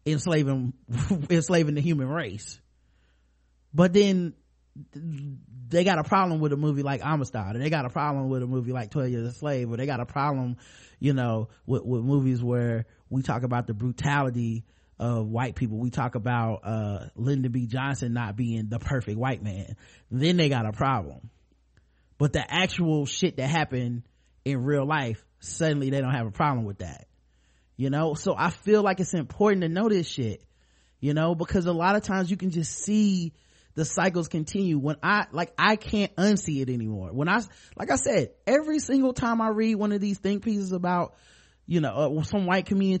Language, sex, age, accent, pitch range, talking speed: English, male, 30-49, American, 125-170 Hz, 195 wpm